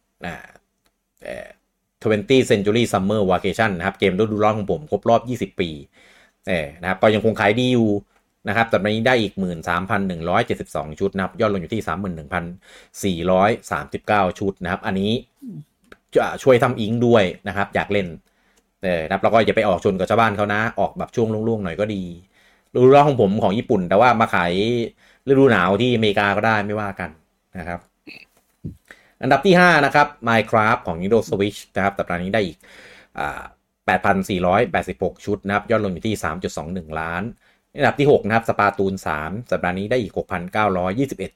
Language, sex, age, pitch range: Thai, male, 30-49, 90-115 Hz